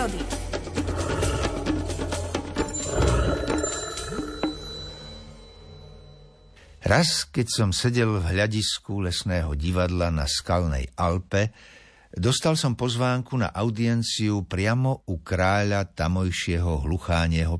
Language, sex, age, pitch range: Slovak, male, 60-79, 80-120 Hz